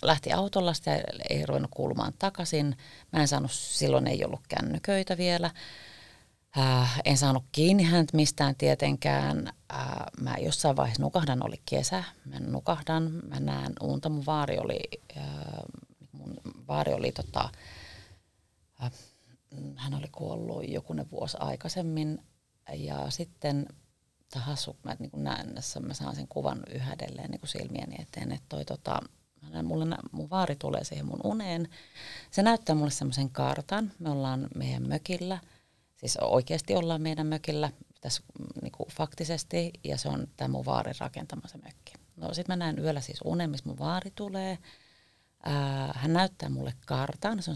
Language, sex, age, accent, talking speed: Finnish, female, 30-49, native, 150 wpm